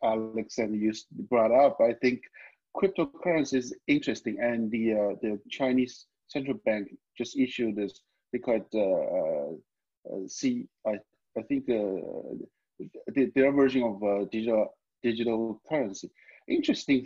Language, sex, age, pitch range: Vietnamese, male, 50-69, 115-160 Hz